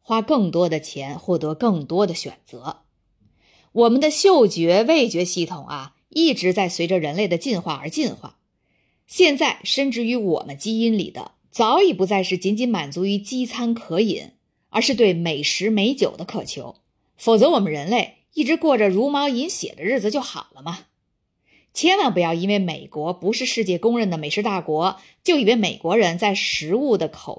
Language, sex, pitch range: Chinese, female, 175-260 Hz